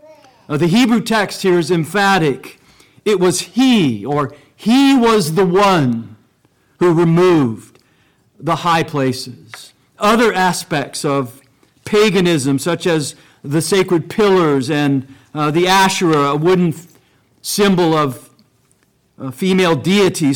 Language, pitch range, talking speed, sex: English, 140-195 Hz, 120 wpm, male